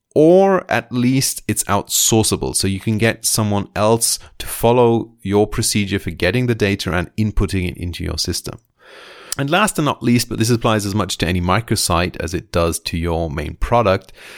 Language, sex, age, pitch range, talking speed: English, male, 30-49, 90-120 Hz, 190 wpm